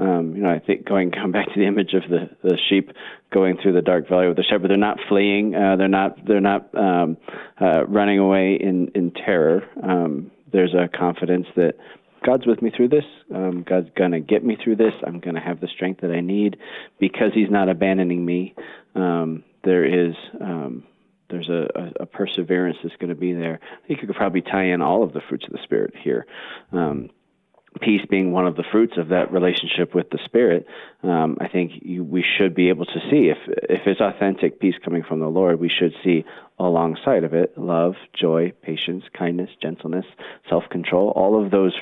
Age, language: 30-49, English